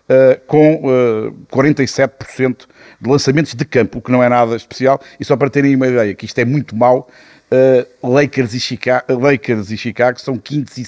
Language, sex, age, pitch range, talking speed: Portuguese, male, 50-69, 125-150 Hz, 195 wpm